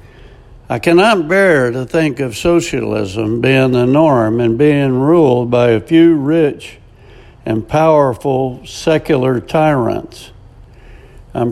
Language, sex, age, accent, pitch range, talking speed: English, male, 60-79, American, 120-155 Hz, 115 wpm